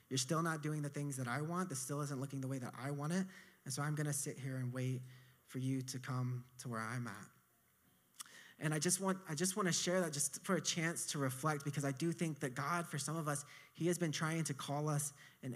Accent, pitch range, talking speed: American, 135-155 Hz, 265 wpm